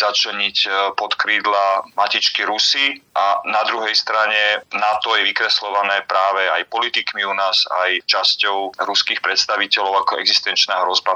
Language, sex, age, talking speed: Slovak, male, 30-49, 125 wpm